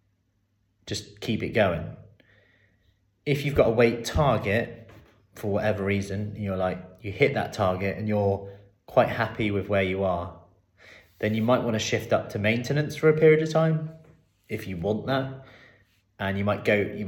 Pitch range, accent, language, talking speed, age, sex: 95-115 Hz, British, English, 175 wpm, 30-49, male